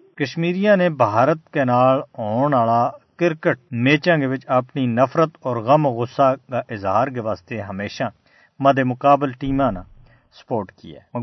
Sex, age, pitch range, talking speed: male, 50-69, 120-150 Hz, 75 wpm